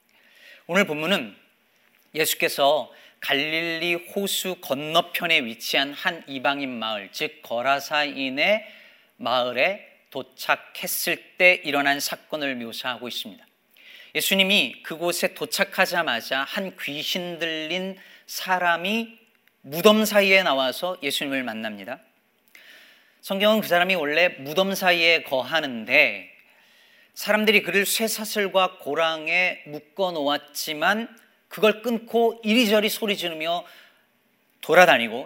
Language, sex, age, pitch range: Korean, male, 40-59, 155-215 Hz